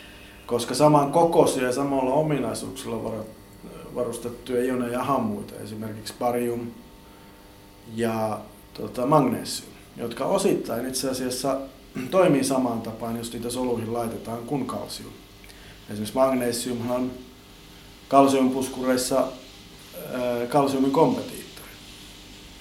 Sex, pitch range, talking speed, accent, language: male, 110-140 Hz, 85 wpm, native, Finnish